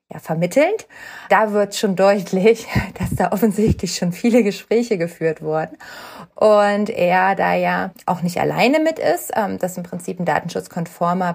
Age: 30-49